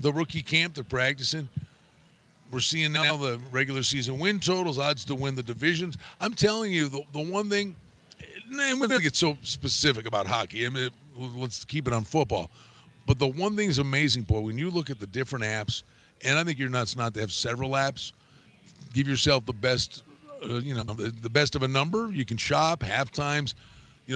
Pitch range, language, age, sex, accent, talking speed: 125-175 Hz, English, 50-69, male, American, 210 wpm